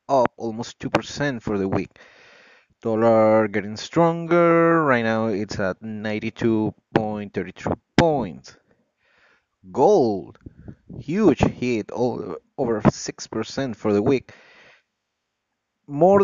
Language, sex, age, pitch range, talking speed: English, male, 30-49, 105-130 Hz, 90 wpm